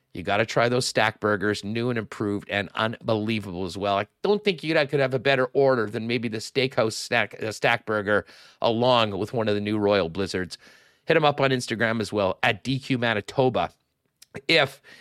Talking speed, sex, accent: 195 wpm, male, American